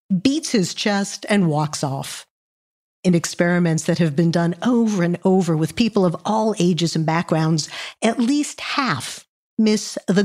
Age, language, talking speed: 50-69, English, 160 wpm